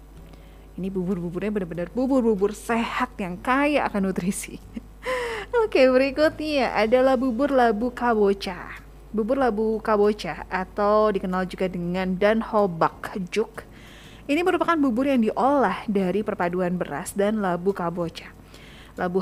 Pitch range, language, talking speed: 180-245 Hz, Indonesian, 110 wpm